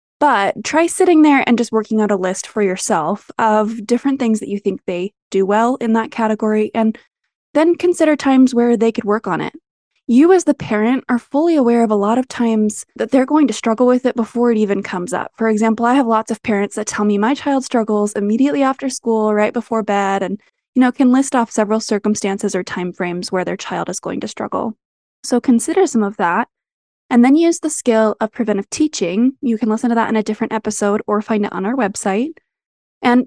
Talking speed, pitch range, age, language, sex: 225 wpm, 210-255 Hz, 20-39, English, female